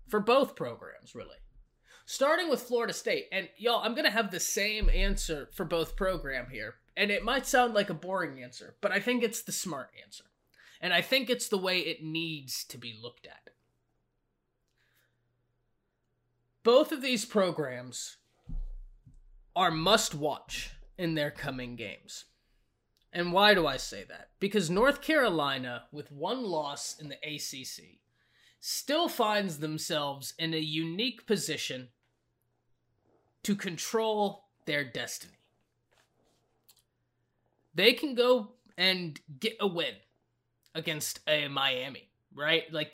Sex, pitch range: male, 135-205 Hz